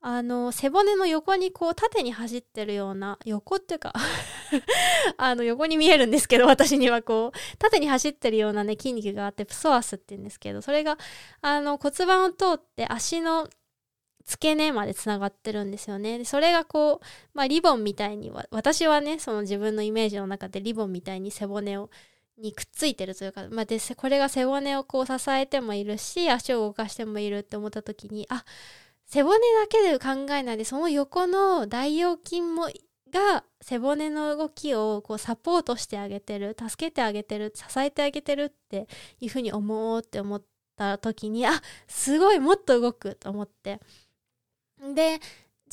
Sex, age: female, 20-39